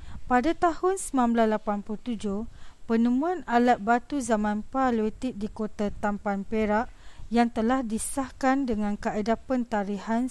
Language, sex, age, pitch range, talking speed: Indonesian, female, 40-59, 210-245 Hz, 105 wpm